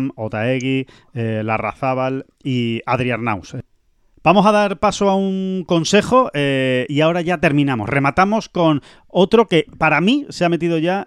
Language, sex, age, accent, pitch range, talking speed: Spanish, male, 30-49, Spanish, 135-180 Hz, 150 wpm